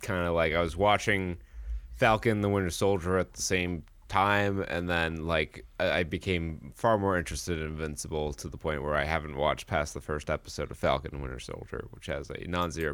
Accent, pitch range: American, 80-100 Hz